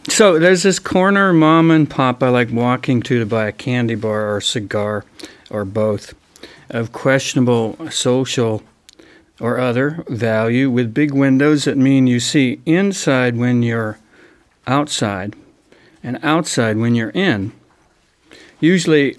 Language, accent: English, American